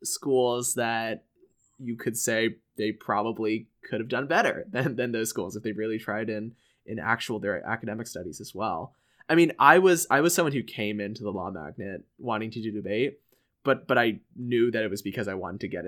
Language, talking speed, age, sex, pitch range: English, 210 wpm, 20-39, male, 105-130 Hz